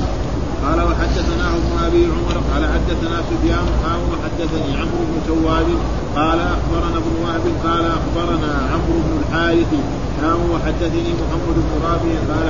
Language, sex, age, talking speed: Arabic, male, 30-49, 130 wpm